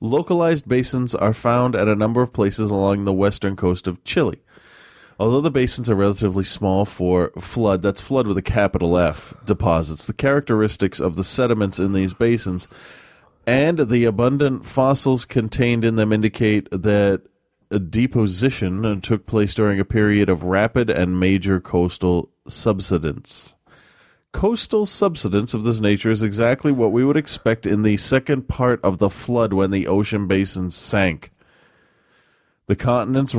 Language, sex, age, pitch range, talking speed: English, male, 30-49, 95-120 Hz, 155 wpm